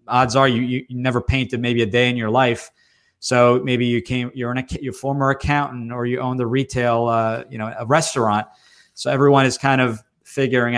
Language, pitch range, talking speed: English, 115-130 Hz, 200 wpm